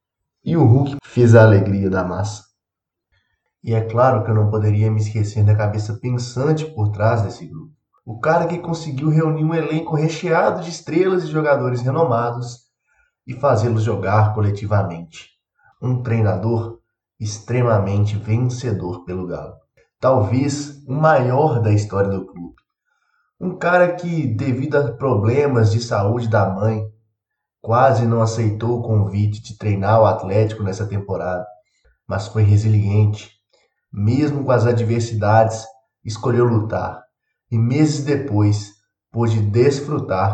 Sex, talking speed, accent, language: male, 130 wpm, Brazilian, Portuguese